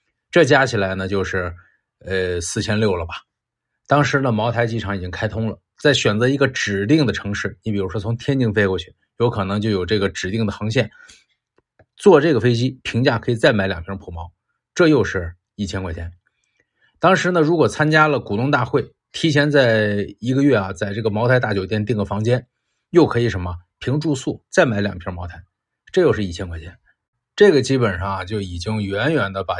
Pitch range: 95-135 Hz